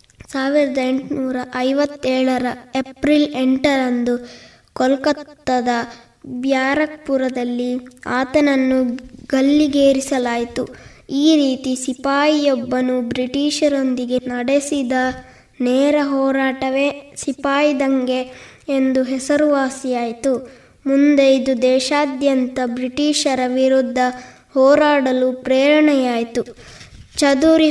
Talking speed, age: 60 wpm, 20-39